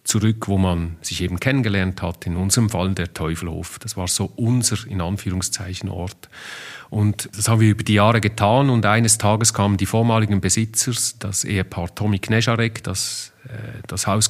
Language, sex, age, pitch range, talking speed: German, male, 40-59, 95-115 Hz, 175 wpm